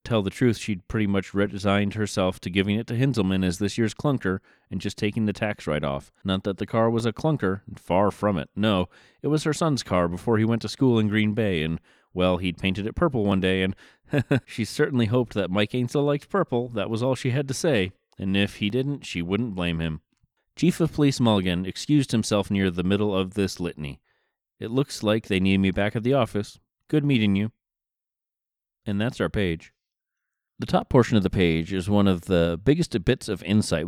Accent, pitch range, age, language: American, 90-115 Hz, 30-49, English